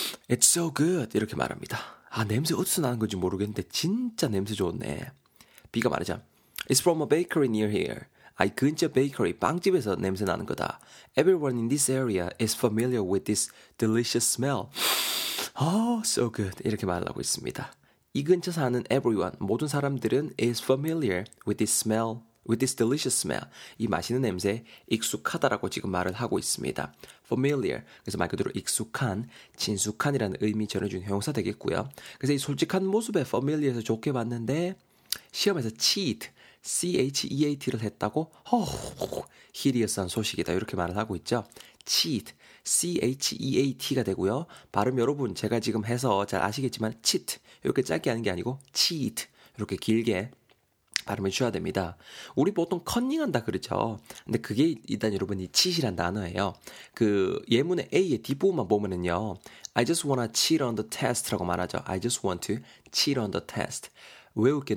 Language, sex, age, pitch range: Korean, male, 30-49, 105-140 Hz